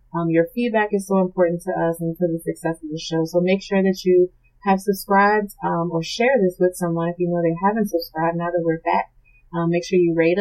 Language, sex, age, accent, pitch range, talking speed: English, female, 30-49, American, 165-190 Hz, 250 wpm